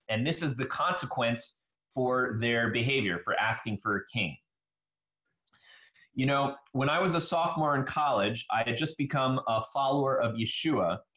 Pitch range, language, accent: 120-155 Hz, English, American